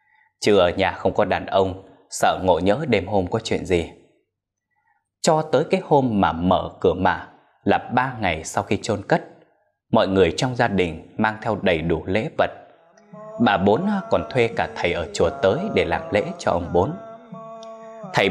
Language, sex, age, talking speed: Vietnamese, male, 20-39, 185 wpm